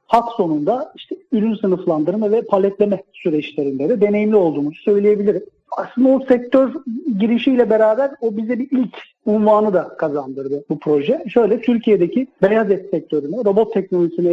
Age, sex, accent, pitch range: 40-59, male, native, 170-230 Hz